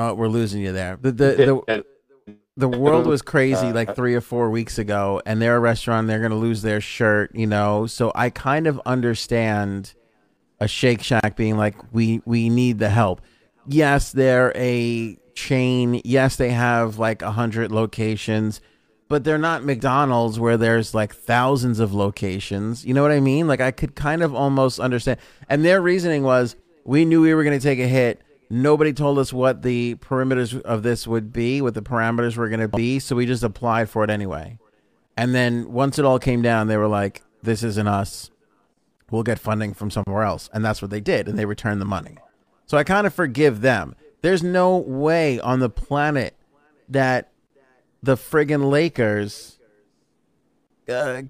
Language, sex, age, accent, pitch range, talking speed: English, male, 30-49, American, 110-140 Hz, 190 wpm